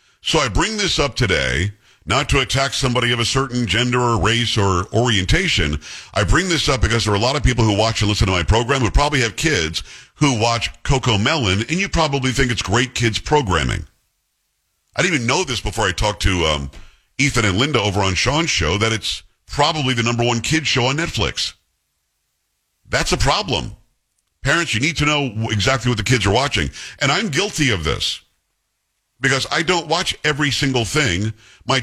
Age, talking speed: 50-69, 200 wpm